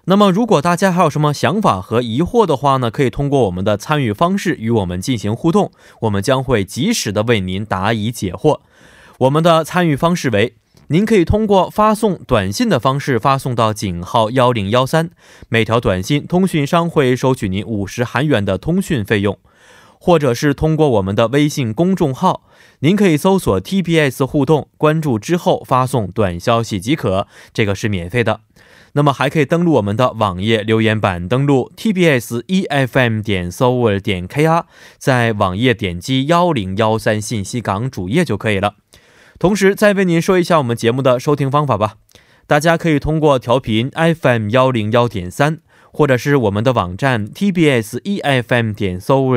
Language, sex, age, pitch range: Korean, male, 20-39, 110-155 Hz